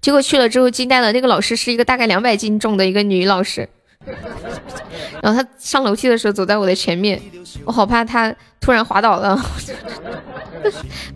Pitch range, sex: 205-255 Hz, female